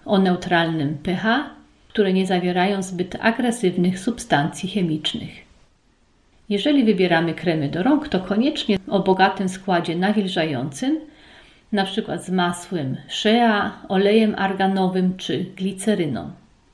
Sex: female